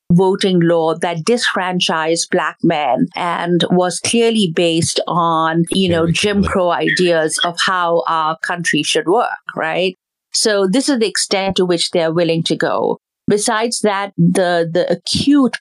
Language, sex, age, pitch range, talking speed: English, female, 50-69, 170-200 Hz, 155 wpm